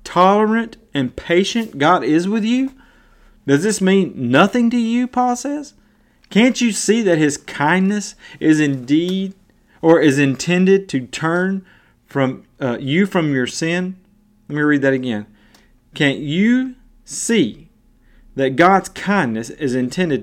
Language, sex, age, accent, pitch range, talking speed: English, male, 30-49, American, 120-180 Hz, 140 wpm